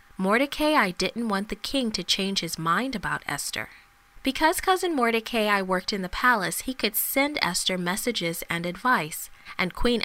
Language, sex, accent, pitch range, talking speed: English, female, American, 180-255 Hz, 160 wpm